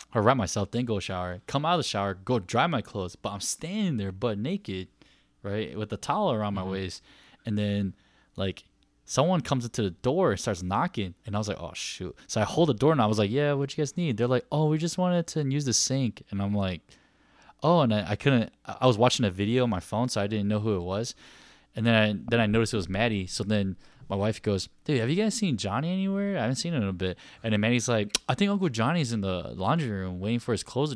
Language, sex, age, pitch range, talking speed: English, male, 10-29, 100-140 Hz, 265 wpm